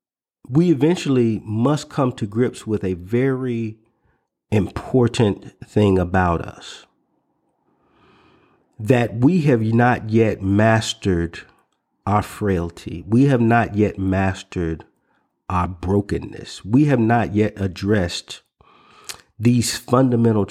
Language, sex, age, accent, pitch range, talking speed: English, male, 40-59, American, 95-125 Hz, 100 wpm